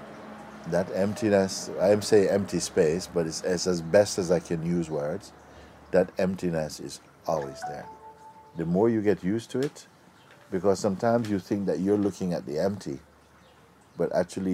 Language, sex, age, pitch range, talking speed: English, male, 60-79, 85-105 Hz, 165 wpm